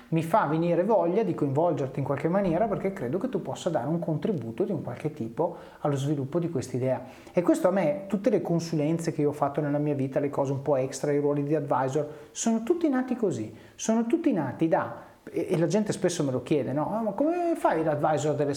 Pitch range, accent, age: 140-195 Hz, native, 30-49